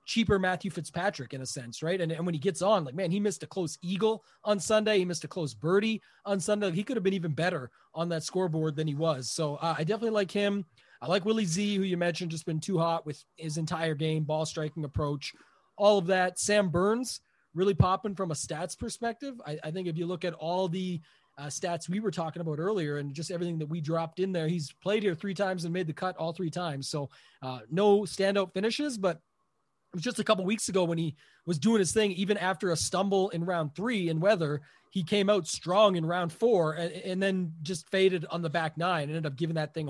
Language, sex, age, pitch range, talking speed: English, male, 30-49, 160-200 Hz, 245 wpm